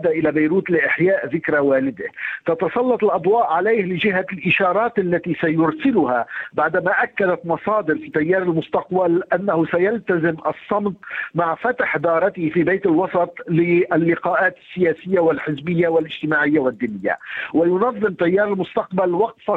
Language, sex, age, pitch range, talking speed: Arabic, male, 50-69, 165-200 Hz, 110 wpm